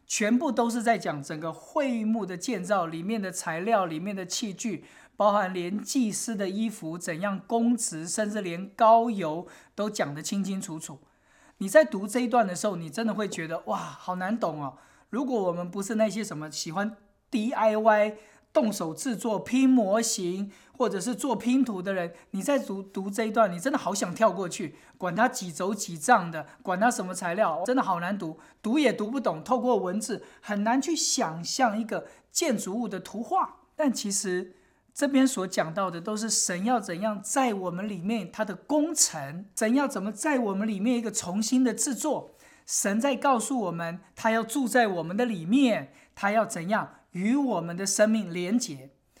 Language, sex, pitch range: English, male, 185-240 Hz